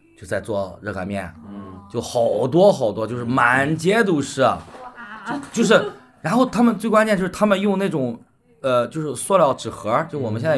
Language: Chinese